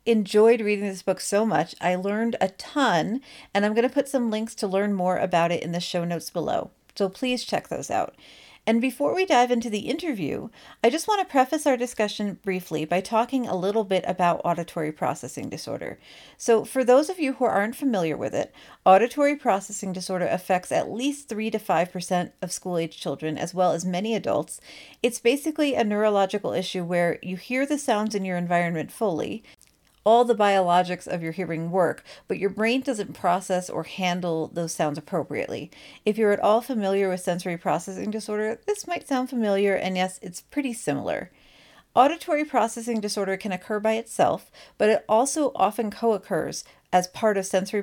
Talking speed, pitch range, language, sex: 185 wpm, 180-235 Hz, English, female